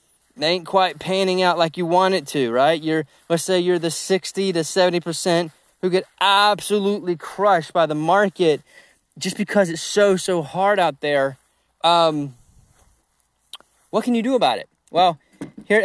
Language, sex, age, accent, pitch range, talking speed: English, male, 30-49, American, 145-170 Hz, 165 wpm